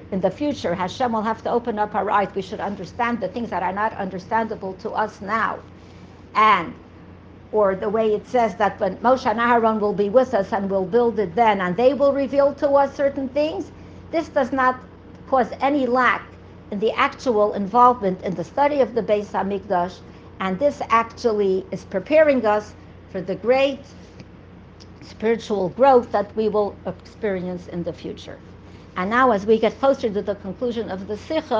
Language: English